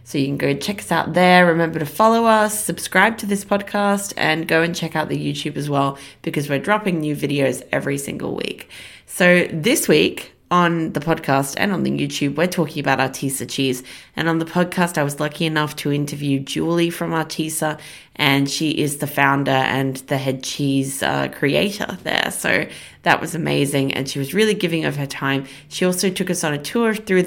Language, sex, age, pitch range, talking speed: English, female, 20-39, 140-180 Hz, 205 wpm